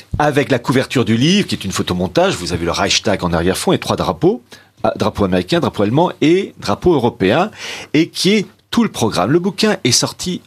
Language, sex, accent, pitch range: French, male, French, 95-140 Hz